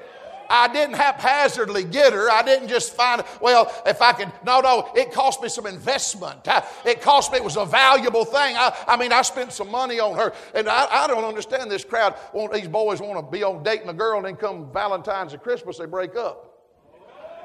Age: 50-69